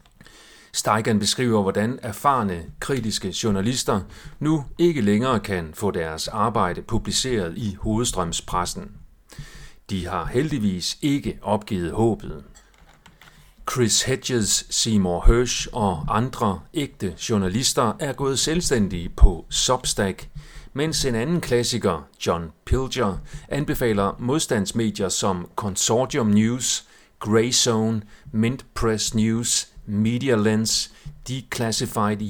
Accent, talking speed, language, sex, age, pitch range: native, 100 wpm, Danish, male, 40-59, 105-130 Hz